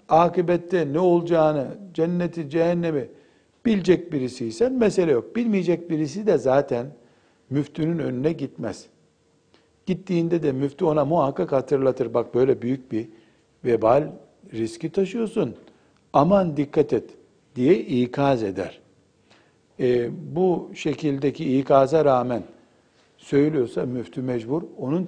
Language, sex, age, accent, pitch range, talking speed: Turkish, male, 60-79, native, 135-195 Hz, 105 wpm